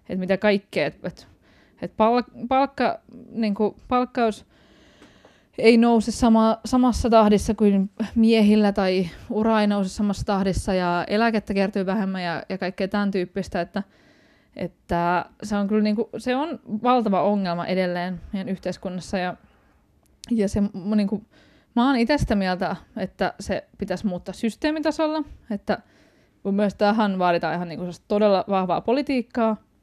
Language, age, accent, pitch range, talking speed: Finnish, 20-39, native, 190-225 Hz, 135 wpm